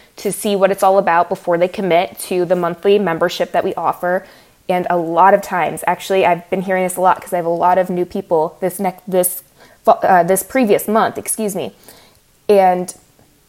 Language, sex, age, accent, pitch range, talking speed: English, female, 20-39, American, 175-200 Hz, 205 wpm